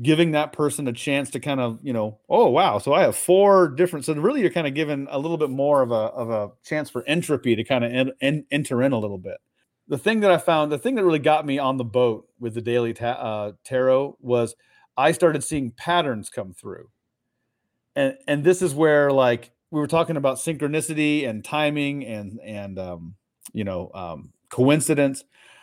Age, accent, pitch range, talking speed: 40-59, American, 120-165 Hz, 215 wpm